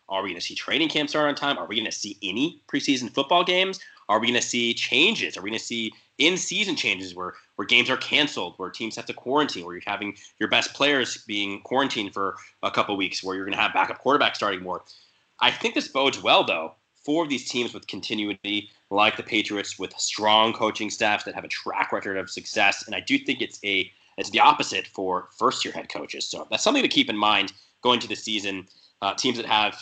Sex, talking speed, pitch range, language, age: male, 235 wpm, 100-130 Hz, English, 20-39